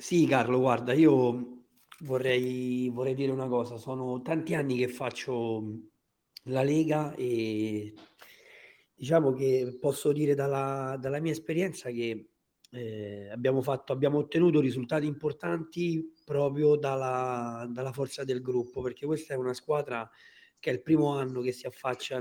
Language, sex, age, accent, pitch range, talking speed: Italian, male, 40-59, native, 120-150 Hz, 140 wpm